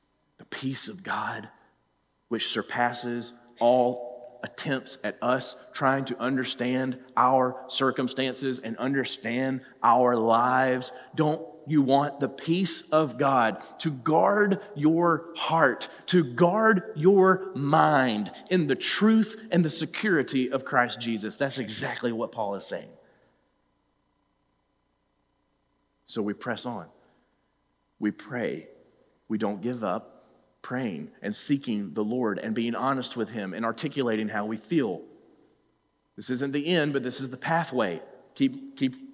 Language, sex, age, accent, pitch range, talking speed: English, male, 40-59, American, 130-180 Hz, 130 wpm